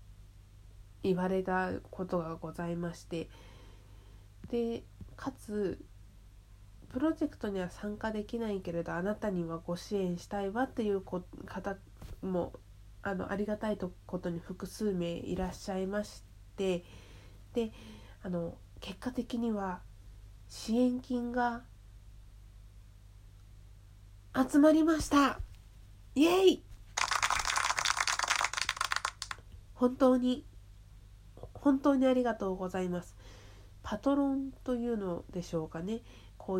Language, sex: Japanese, female